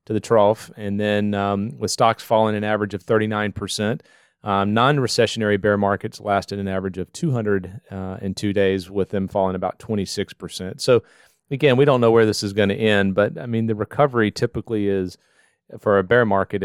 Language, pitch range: English, 100-120 Hz